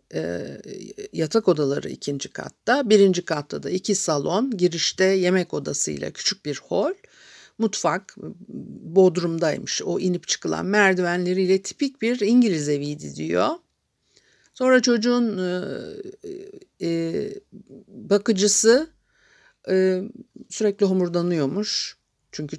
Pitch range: 155-215 Hz